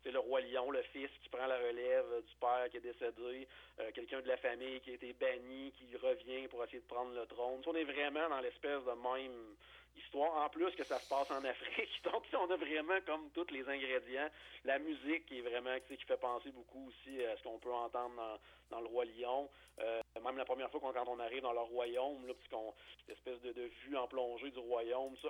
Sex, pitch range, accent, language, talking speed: male, 125-150 Hz, Canadian, English, 240 wpm